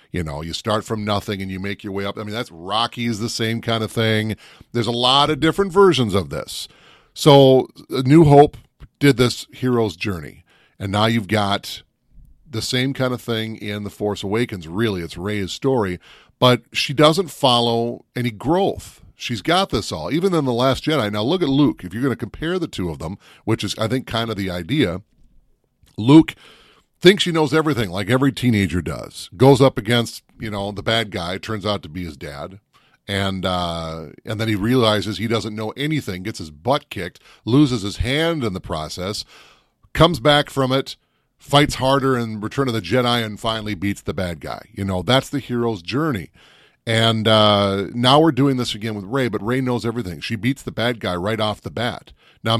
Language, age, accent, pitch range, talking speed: English, 40-59, American, 100-130 Hz, 205 wpm